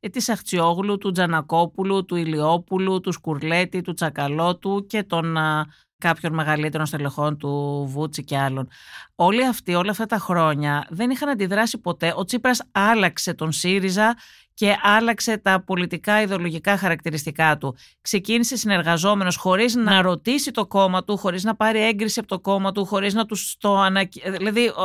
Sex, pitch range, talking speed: female, 170-235 Hz, 155 wpm